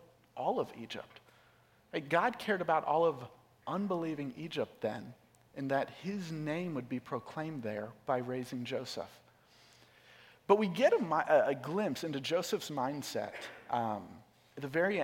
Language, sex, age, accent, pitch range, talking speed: English, male, 40-59, American, 130-185 Hz, 140 wpm